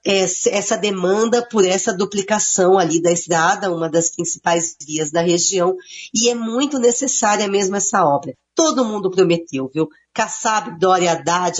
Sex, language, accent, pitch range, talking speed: female, Portuguese, Brazilian, 175-230 Hz, 145 wpm